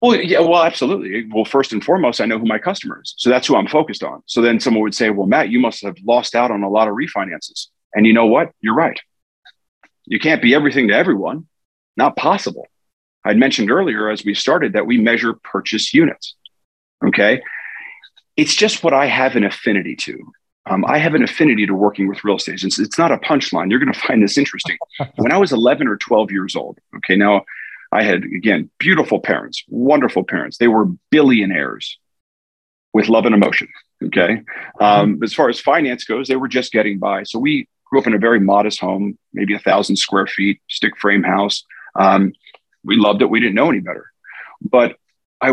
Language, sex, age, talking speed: English, male, 40-59, 205 wpm